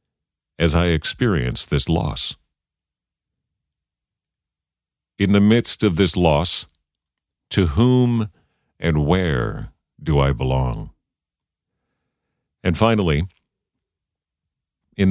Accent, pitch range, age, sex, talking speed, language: American, 80-105 Hz, 50-69, male, 85 wpm, English